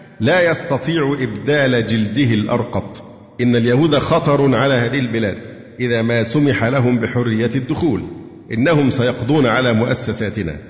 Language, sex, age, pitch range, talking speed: Arabic, male, 50-69, 115-145 Hz, 120 wpm